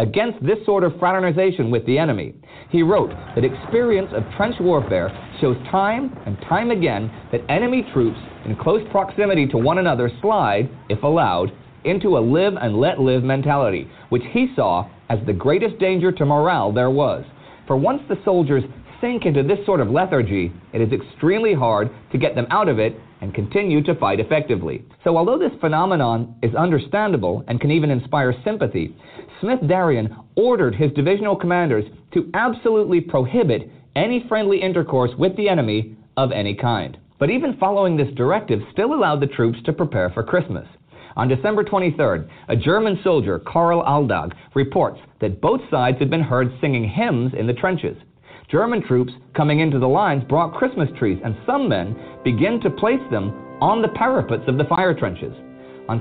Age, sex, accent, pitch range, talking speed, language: 40-59, male, American, 120-185 Hz, 170 wpm, English